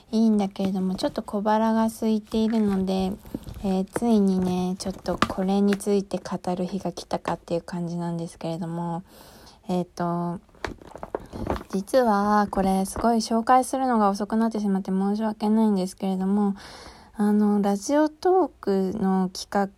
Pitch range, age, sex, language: 180-220 Hz, 20-39, female, Japanese